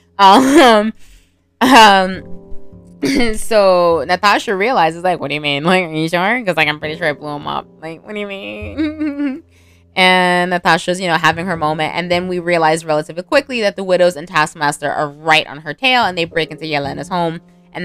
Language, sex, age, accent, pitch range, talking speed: English, female, 20-39, American, 170-230 Hz, 195 wpm